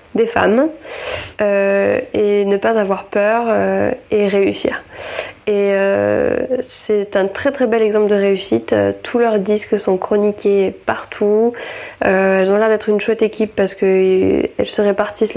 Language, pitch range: French, 195-215 Hz